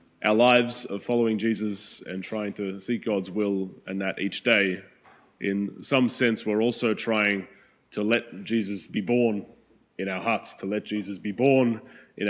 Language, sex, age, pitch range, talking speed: English, male, 20-39, 100-115 Hz, 170 wpm